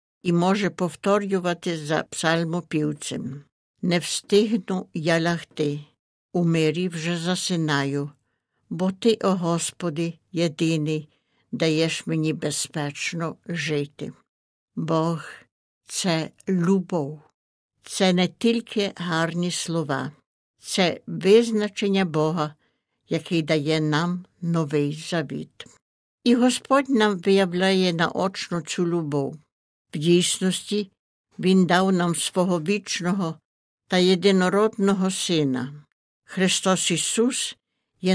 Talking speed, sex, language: 90 wpm, female, Ukrainian